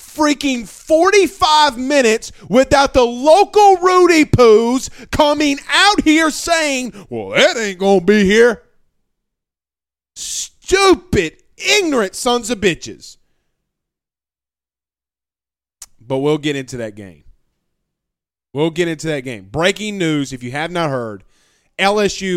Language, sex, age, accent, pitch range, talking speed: English, male, 30-49, American, 130-185 Hz, 115 wpm